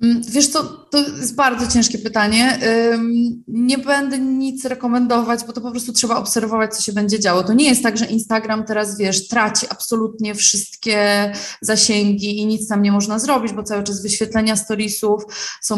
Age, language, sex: 20-39, Polish, female